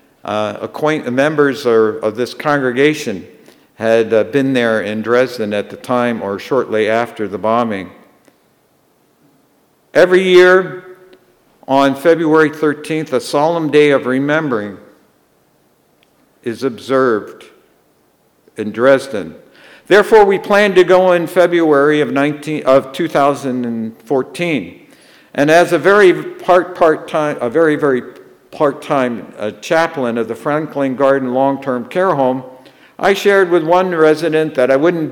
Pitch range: 125-165 Hz